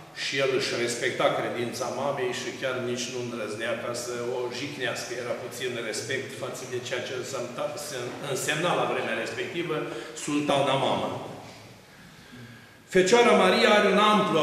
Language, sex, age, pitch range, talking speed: Romanian, male, 50-69, 130-175 Hz, 135 wpm